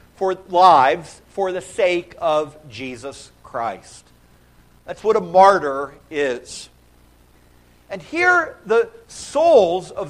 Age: 50-69